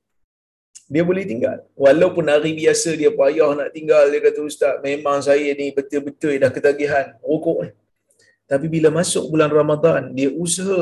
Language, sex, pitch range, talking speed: Malayalam, male, 145-185 Hz, 155 wpm